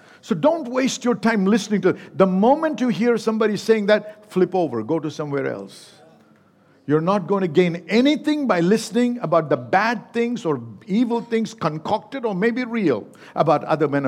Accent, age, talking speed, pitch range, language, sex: Indian, 50-69, 180 wpm, 195-250 Hz, English, male